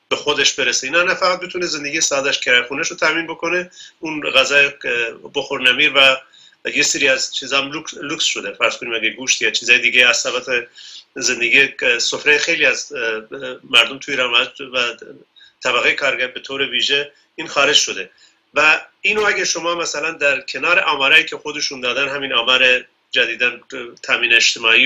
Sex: male